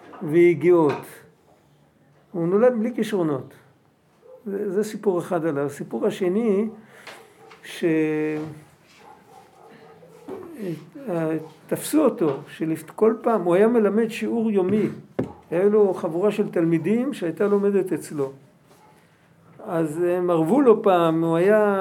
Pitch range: 160-205 Hz